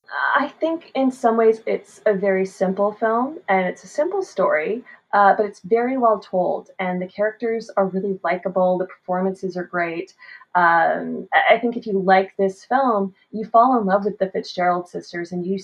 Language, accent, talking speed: English, American, 190 wpm